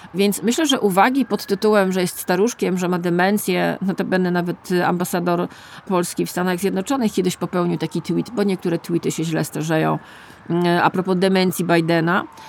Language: Polish